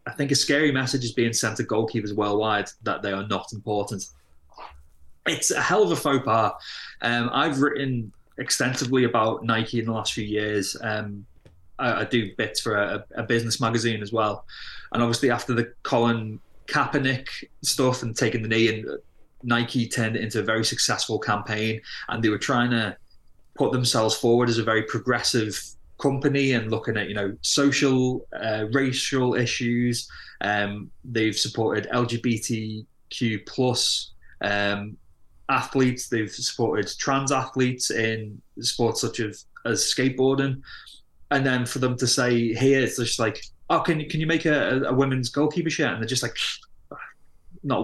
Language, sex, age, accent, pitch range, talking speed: English, male, 20-39, British, 110-130 Hz, 165 wpm